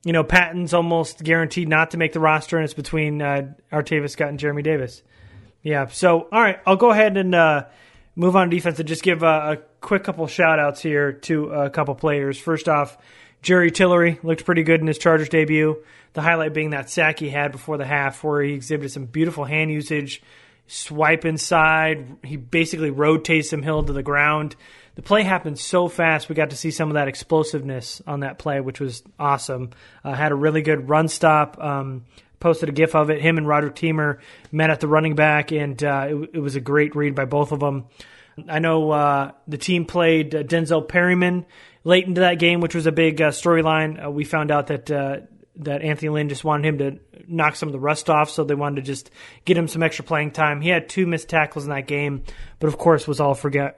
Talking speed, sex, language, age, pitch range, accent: 220 wpm, male, English, 30-49, 145-160 Hz, American